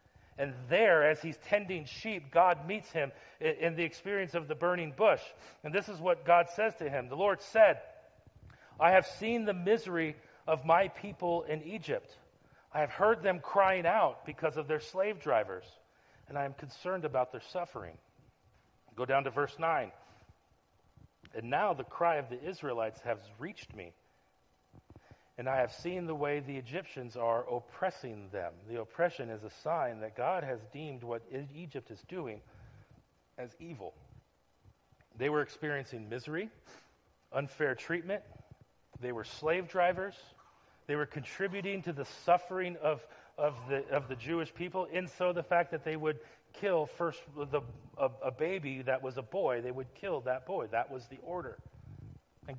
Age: 40-59